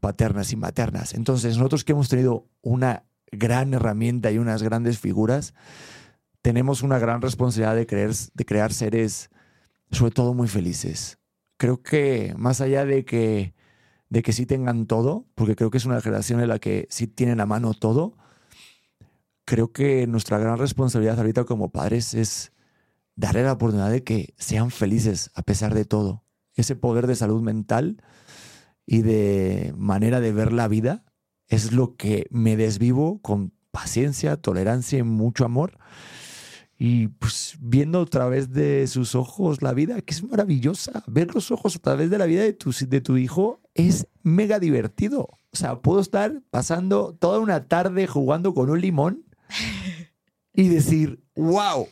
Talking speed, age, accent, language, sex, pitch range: 160 wpm, 40-59, Mexican, Spanish, male, 110-145 Hz